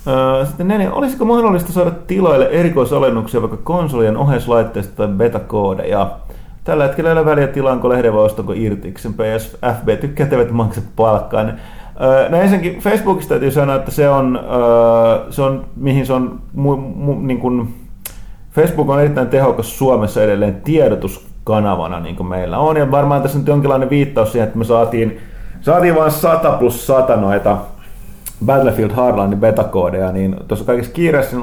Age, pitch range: 30-49, 105-145 Hz